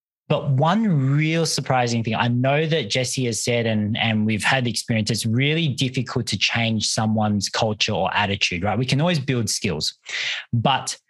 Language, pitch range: English, 110-140 Hz